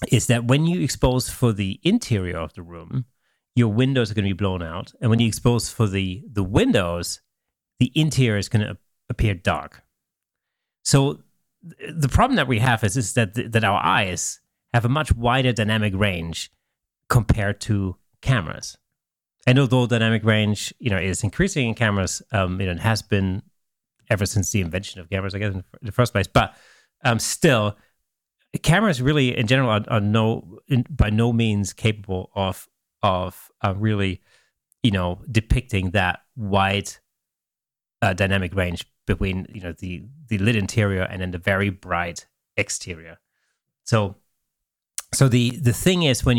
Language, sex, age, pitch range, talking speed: English, male, 30-49, 95-125 Hz, 170 wpm